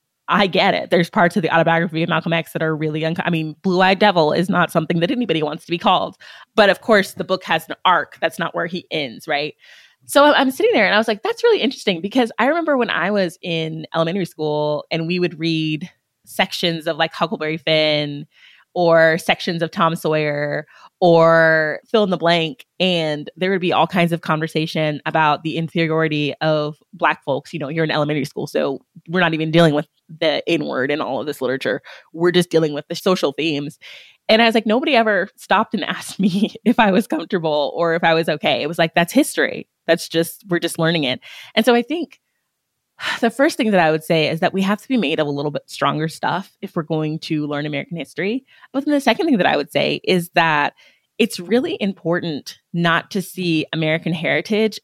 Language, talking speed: English, 220 wpm